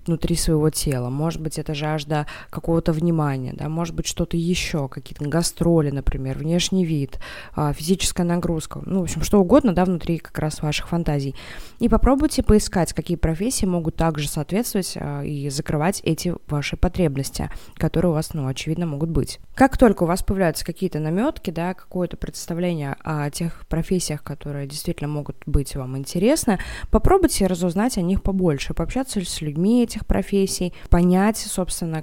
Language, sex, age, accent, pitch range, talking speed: Russian, female, 20-39, native, 155-190 Hz, 155 wpm